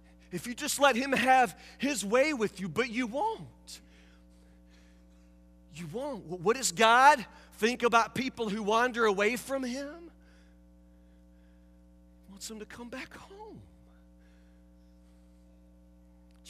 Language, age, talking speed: English, 40-59, 125 wpm